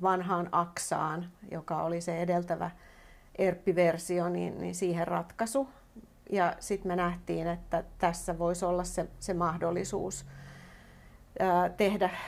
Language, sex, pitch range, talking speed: Finnish, female, 170-185 Hz, 110 wpm